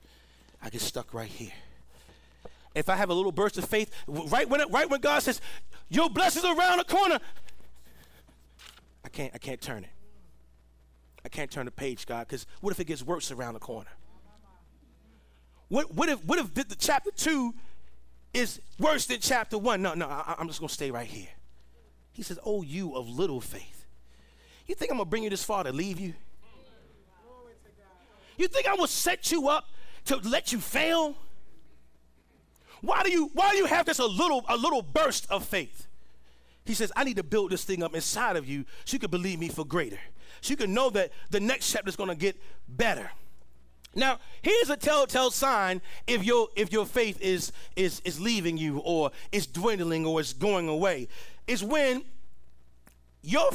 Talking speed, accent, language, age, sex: 190 wpm, American, English, 40-59, male